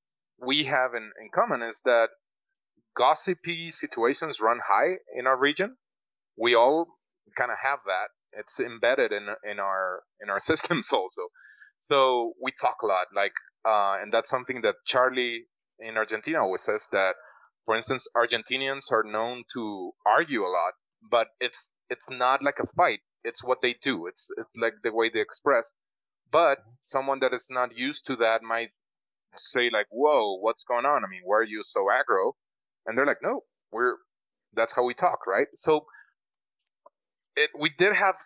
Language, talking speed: English, 175 wpm